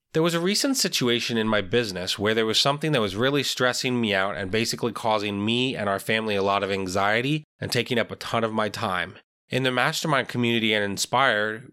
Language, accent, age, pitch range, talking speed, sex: English, American, 20-39, 105-130 Hz, 220 wpm, male